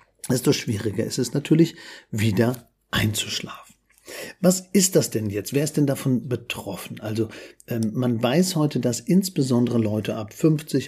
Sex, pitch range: male, 110-145 Hz